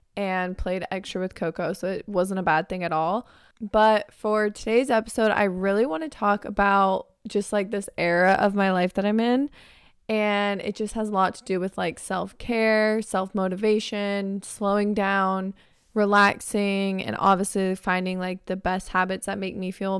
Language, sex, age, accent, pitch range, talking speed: English, female, 20-39, American, 185-215 Hz, 175 wpm